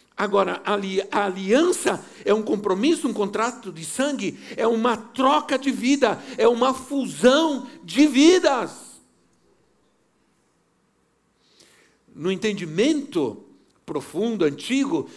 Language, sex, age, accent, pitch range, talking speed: Portuguese, male, 60-79, Brazilian, 195-255 Hz, 95 wpm